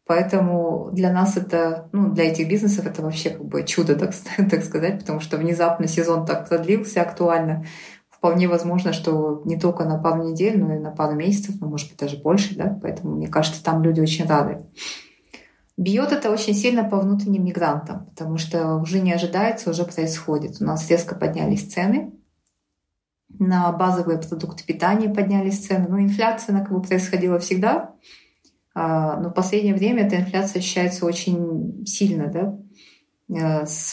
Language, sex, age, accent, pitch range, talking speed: Russian, female, 20-39, native, 165-195 Hz, 165 wpm